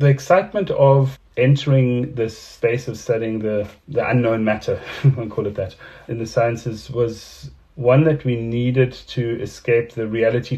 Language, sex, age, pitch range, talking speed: English, male, 30-49, 110-125 Hz, 160 wpm